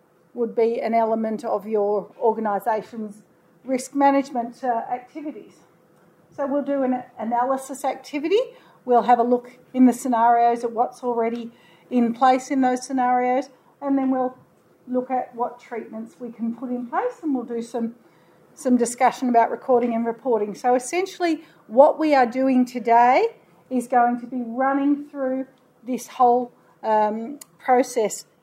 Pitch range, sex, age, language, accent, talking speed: 230-285 Hz, female, 40-59, English, Australian, 150 wpm